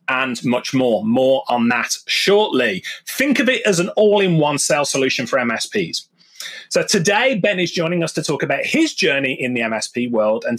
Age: 30-49